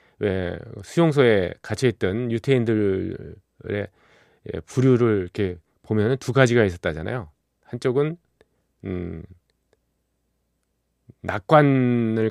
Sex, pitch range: male, 95-130 Hz